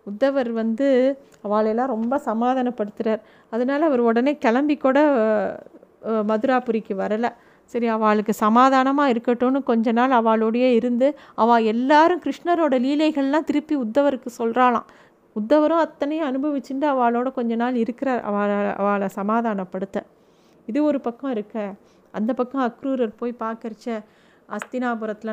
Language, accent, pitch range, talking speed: Tamil, native, 210-255 Hz, 110 wpm